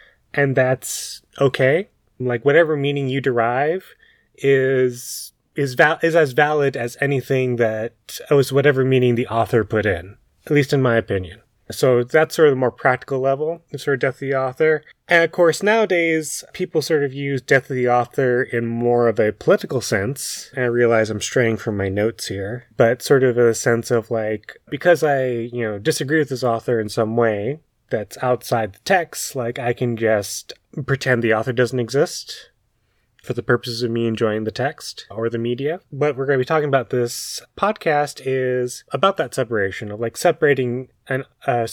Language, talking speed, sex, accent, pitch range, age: English, 185 wpm, male, American, 115-145 Hz, 20-39